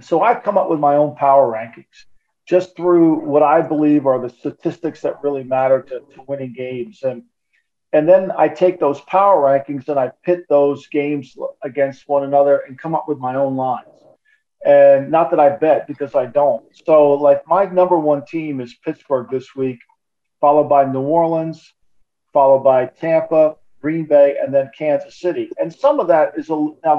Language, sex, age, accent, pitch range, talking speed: English, male, 50-69, American, 135-160 Hz, 190 wpm